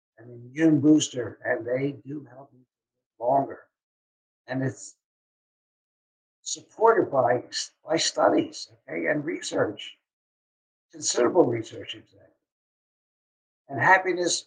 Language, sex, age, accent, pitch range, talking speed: English, male, 60-79, American, 120-170 Hz, 95 wpm